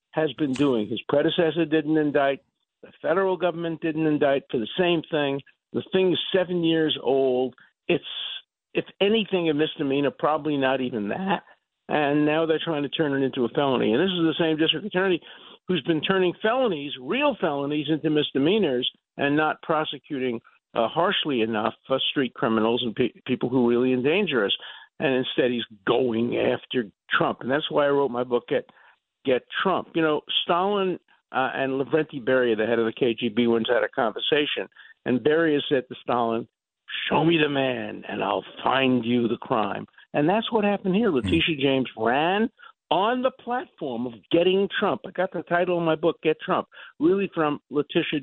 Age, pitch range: 50-69, 130-175 Hz